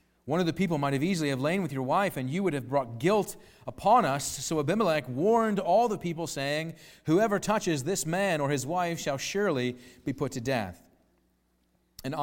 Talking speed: 200 wpm